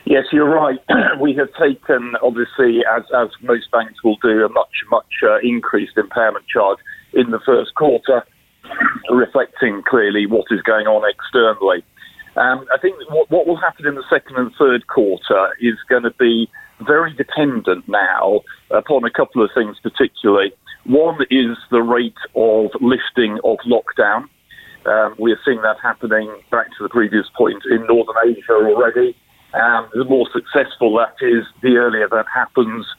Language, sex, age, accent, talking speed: English, male, 40-59, British, 165 wpm